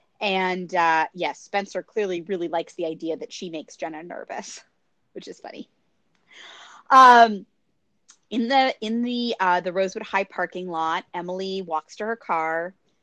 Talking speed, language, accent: 150 wpm, English, American